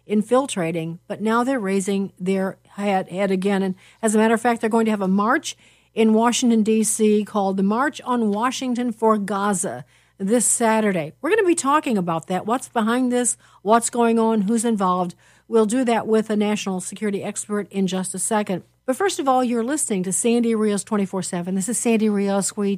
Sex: female